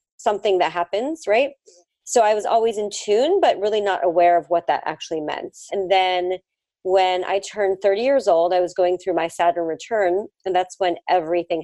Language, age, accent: English, 30-49, American